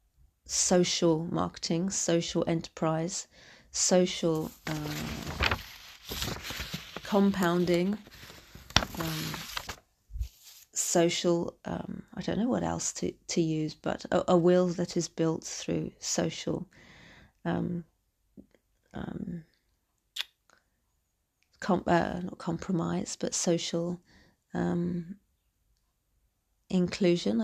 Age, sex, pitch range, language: 30-49, female, 160-185 Hz, English